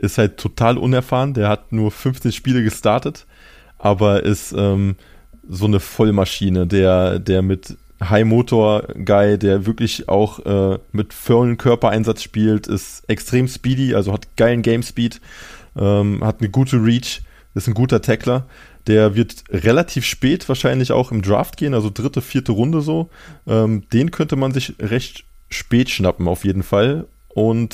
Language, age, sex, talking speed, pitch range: German, 20-39, male, 160 wpm, 100-120 Hz